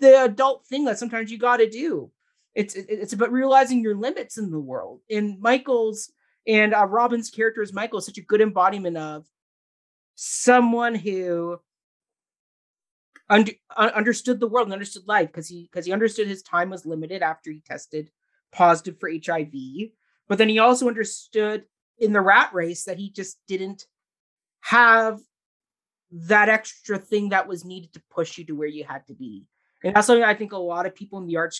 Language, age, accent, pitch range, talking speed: English, 30-49, American, 170-220 Hz, 180 wpm